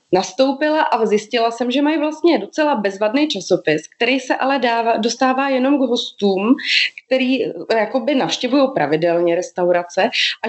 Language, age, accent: Czech, 20-39, native